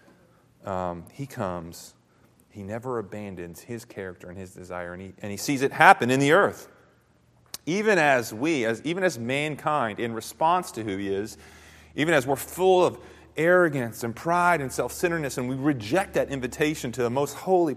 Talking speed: 180 wpm